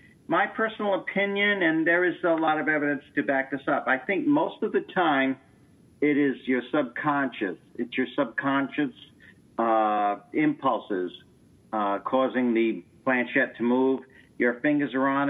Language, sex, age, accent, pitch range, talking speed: English, male, 50-69, American, 120-145 Hz, 155 wpm